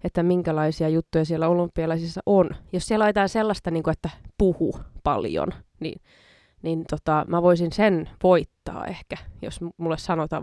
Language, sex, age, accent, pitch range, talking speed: Finnish, female, 20-39, native, 160-185 Hz, 150 wpm